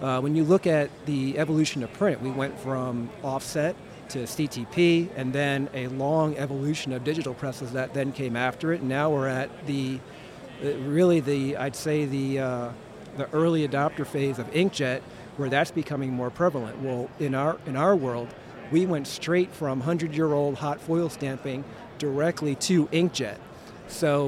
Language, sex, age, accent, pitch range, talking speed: English, male, 40-59, American, 130-155 Hz, 165 wpm